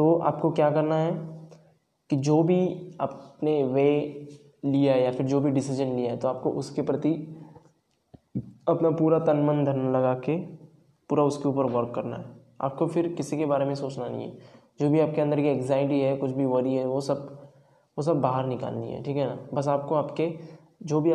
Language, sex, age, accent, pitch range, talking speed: Hindi, male, 10-29, native, 130-150 Hz, 200 wpm